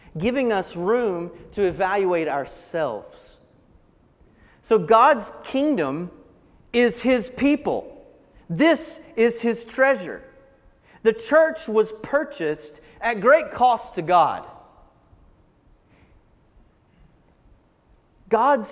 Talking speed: 85 wpm